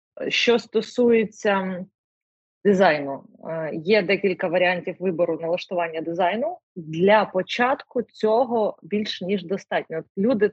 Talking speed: 95 wpm